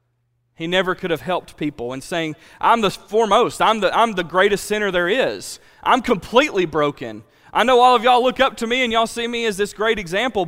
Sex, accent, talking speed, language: male, American, 225 wpm, English